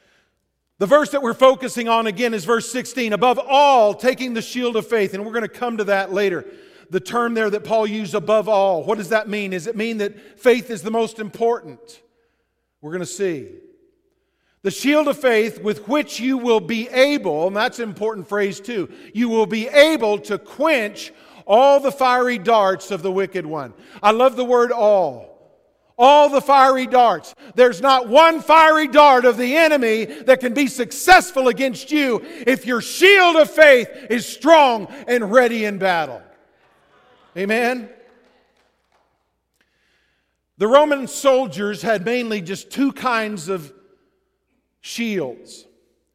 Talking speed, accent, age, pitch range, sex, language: 165 wpm, American, 50-69, 205-260 Hz, male, English